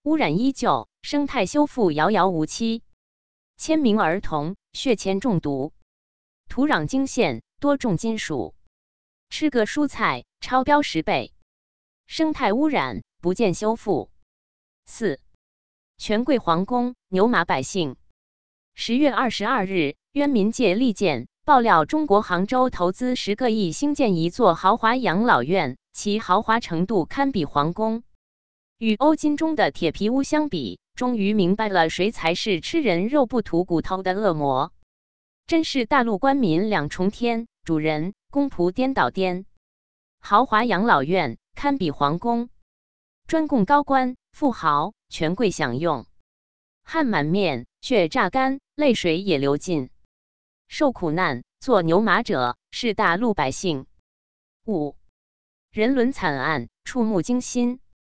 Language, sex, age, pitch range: Chinese, female, 20-39, 150-250 Hz